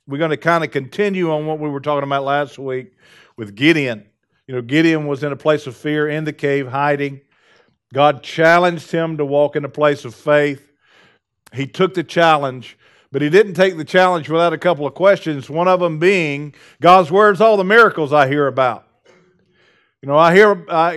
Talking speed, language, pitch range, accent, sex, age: 195 wpm, English, 150-190 Hz, American, male, 50-69